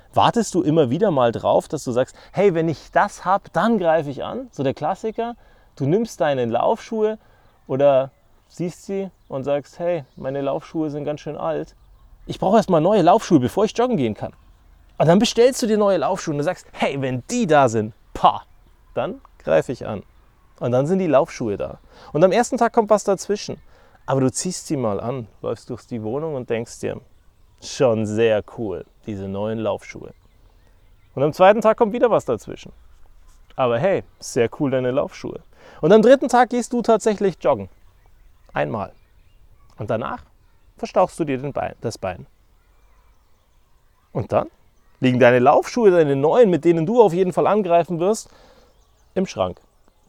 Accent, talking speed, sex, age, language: German, 175 wpm, male, 30-49, German